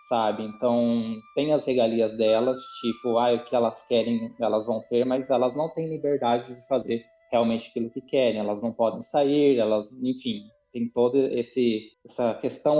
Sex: male